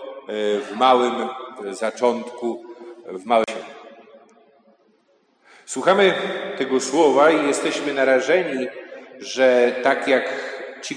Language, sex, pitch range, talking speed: Polish, male, 120-135 Hz, 90 wpm